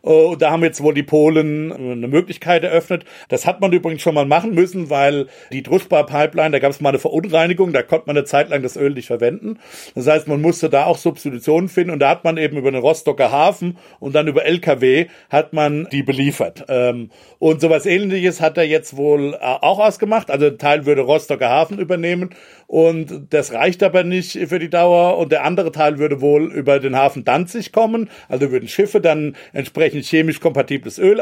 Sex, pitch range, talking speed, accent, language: male, 140-170 Hz, 200 wpm, German, German